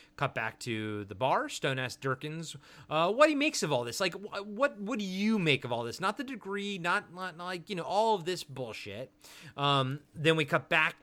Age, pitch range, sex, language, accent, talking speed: 30-49, 135-175 Hz, male, English, American, 230 wpm